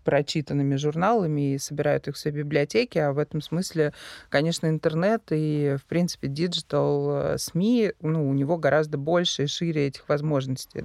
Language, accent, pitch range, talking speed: Russian, native, 145-175 Hz, 155 wpm